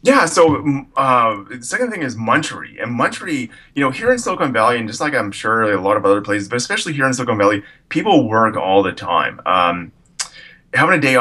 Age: 20-39